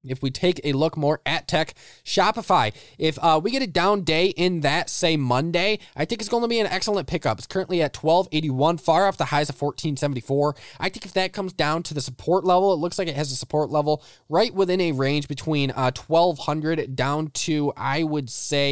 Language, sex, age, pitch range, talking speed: English, male, 20-39, 145-195 Hz, 220 wpm